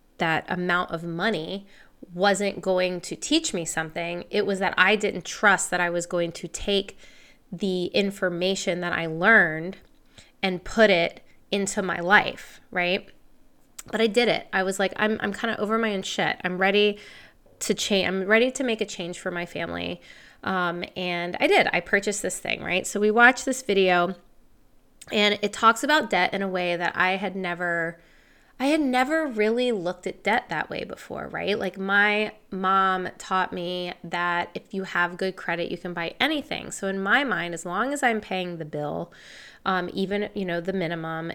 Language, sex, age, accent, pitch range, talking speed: English, female, 20-39, American, 175-215 Hz, 190 wpm